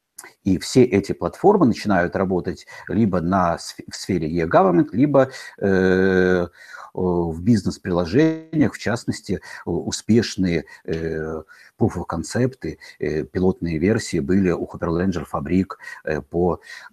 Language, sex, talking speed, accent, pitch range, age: Russian, male, 100 wpm, native, 85-115 Hz, 50-69